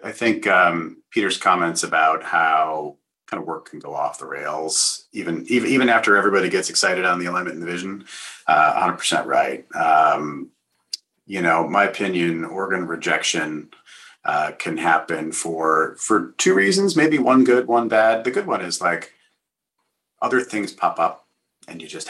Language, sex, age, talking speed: English, male, 40-59, 170 wpm